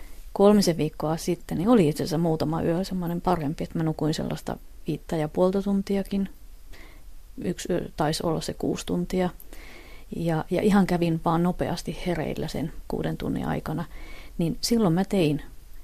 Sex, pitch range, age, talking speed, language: female, 155-185 Hz, 30-49, 150 wpm, Finnish